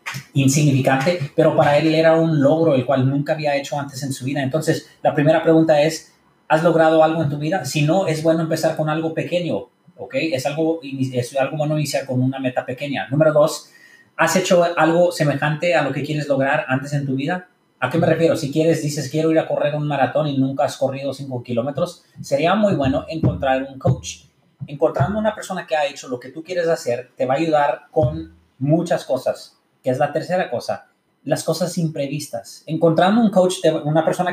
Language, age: English, 30-49